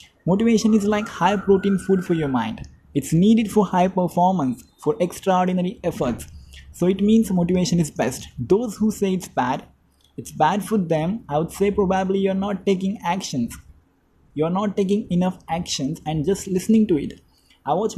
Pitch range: 155-200 Hz